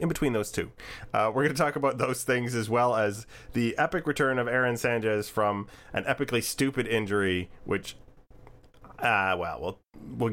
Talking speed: 180 wpm